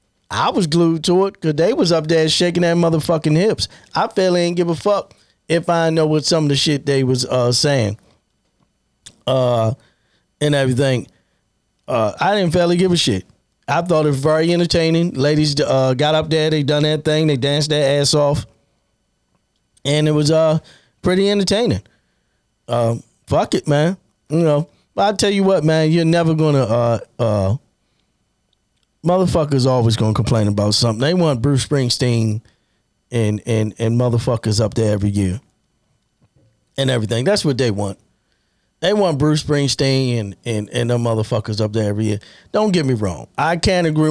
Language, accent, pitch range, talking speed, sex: English, American, 120-165 Hz, 180 wpm, male